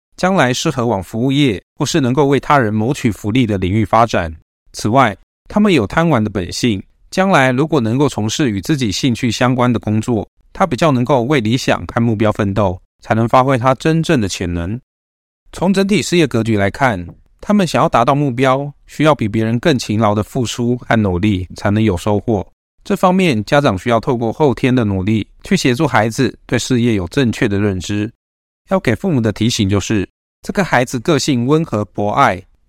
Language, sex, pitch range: Chinese, male, 105-140 Hz